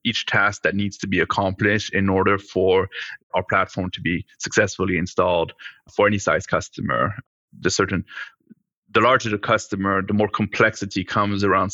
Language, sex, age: English, male, 30-49